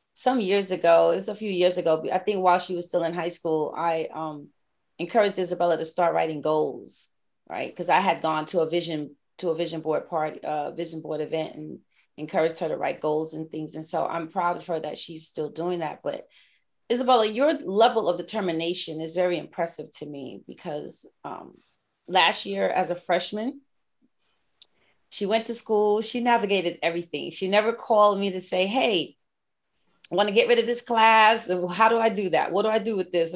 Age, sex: 30-49, female